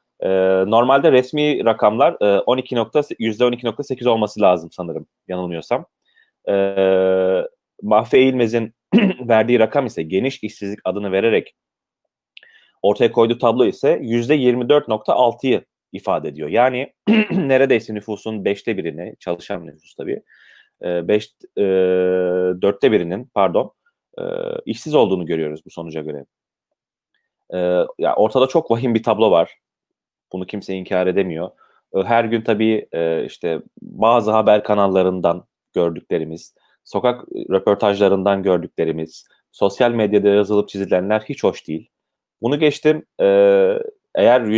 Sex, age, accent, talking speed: male, 30-49, native, 110 wpm